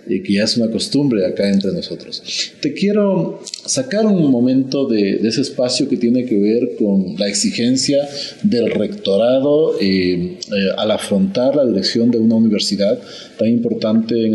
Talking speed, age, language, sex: 165 wpm, 40-59, Spanish, male